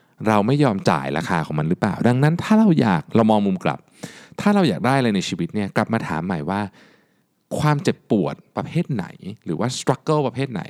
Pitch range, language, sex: 100-150 Hz, Thai, male